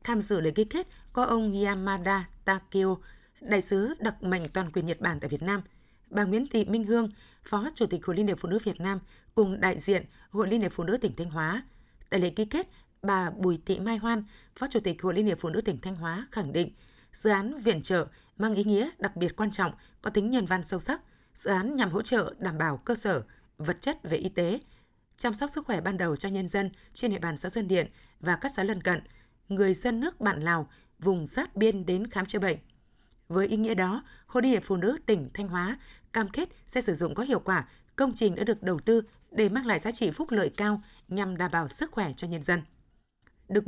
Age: 20-39